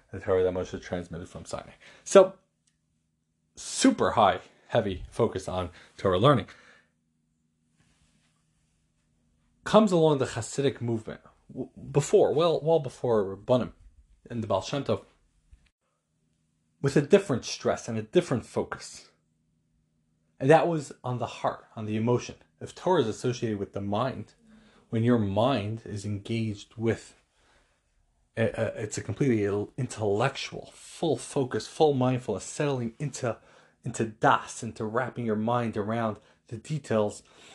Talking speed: 125 wpm